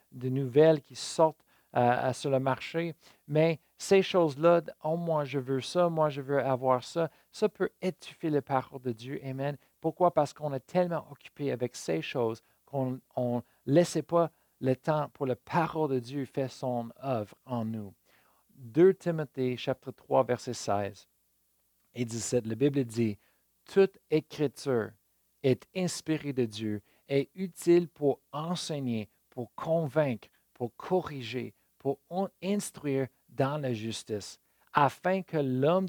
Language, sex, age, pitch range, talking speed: French, male, 50-69, 125-160 Hz, 145 wpm